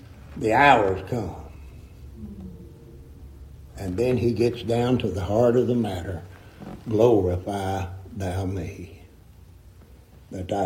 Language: English